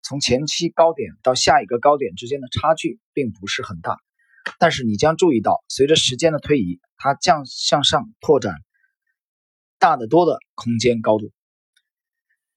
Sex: male